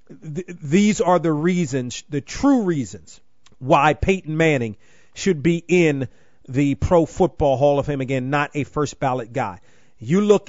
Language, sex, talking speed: English, male, 155 wpm